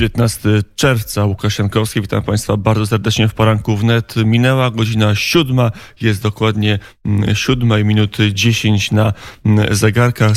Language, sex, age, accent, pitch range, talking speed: Polish, male, 30-49, native, 105-115 Hz, 125 wpm